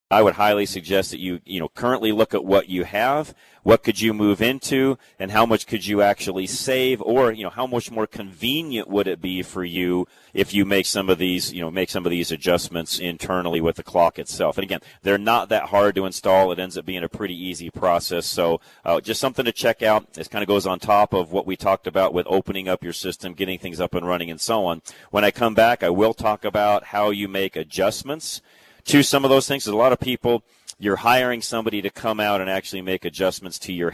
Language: English